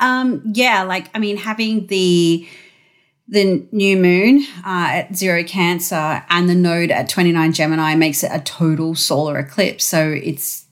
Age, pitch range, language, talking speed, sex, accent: 30-49, 165-200 Hz, English, 155 wpm, female, Australian